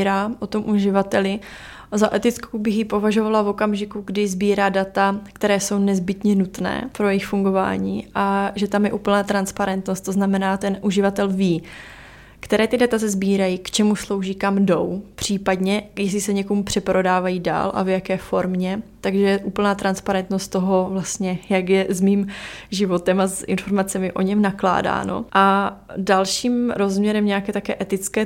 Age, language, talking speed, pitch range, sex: 20-39, Czech, 155 wpm, 185-205 Hz, female